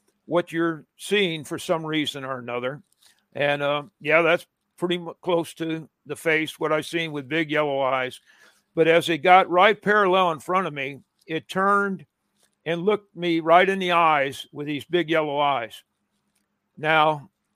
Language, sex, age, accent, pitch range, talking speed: English, male, 50-69, American, 150-180 Hz, 170 wpm